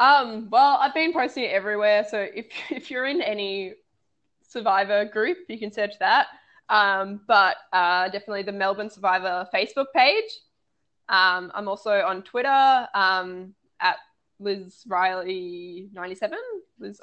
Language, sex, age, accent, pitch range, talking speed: English, female, 10-29, Australian, 195-255 Hz, 135 wpm